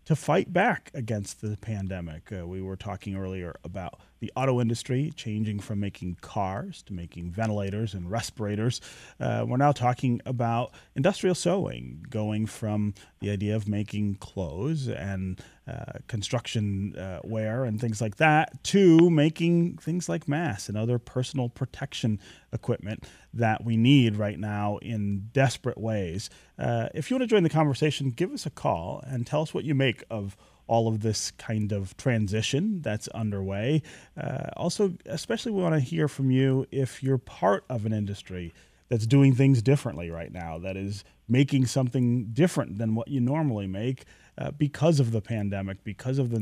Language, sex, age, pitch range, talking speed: English, male, 30-49, 105-140 Hz, 170 wpm